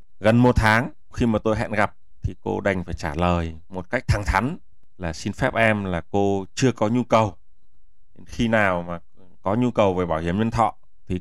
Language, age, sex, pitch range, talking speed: Vietnamese, 20-39, male, 85-115 Hz, 215 wpm